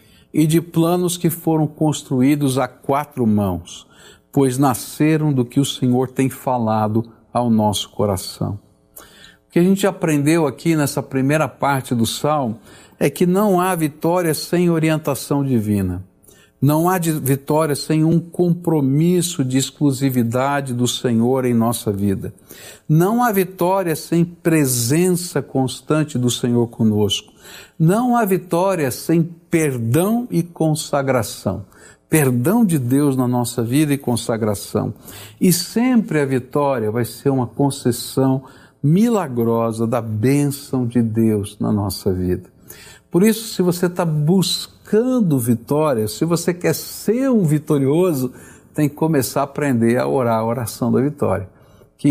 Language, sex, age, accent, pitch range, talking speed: Portuguese, male, 60-79, Brazilian, 120-170 Hz, 135 wpm